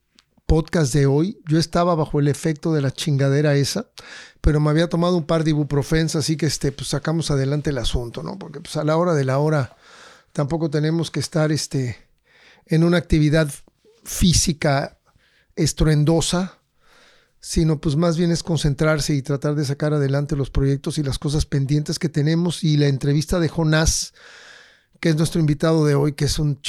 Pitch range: 145-170 Hz